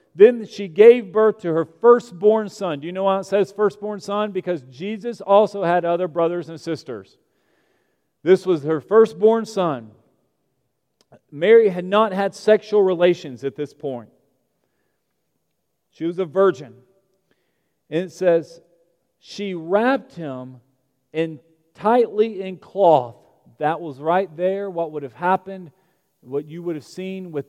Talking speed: 140 wpm